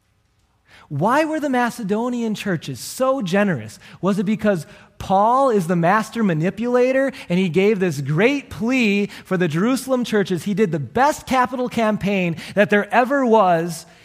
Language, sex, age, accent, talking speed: English, male, 30-49, American, 150 wpm